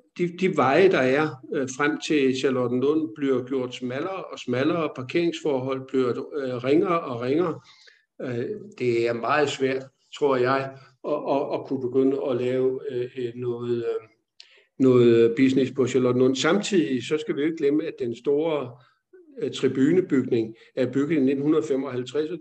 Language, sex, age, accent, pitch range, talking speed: Danish, male, 50-69, native, 130-165 Hz, 145 wpm